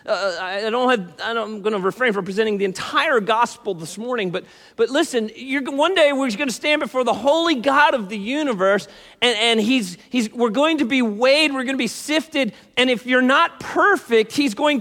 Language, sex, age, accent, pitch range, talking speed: English, male, 40-59, American, 230-290 Hz, 225 wpm